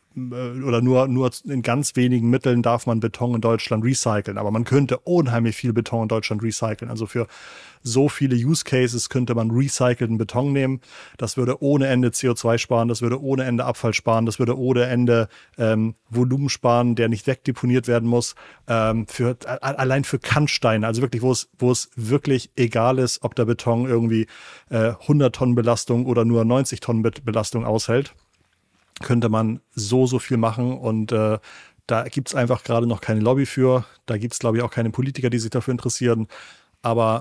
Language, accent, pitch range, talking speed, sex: German, German, 115-125 Hz, 185 wpm, male